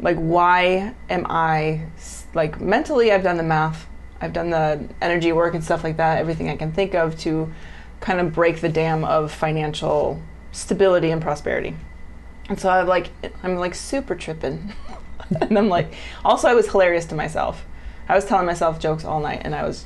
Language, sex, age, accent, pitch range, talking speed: English, female, 20-39, American, 150-200 Hz, 185 wpm